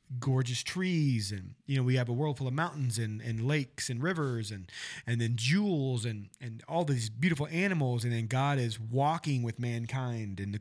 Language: English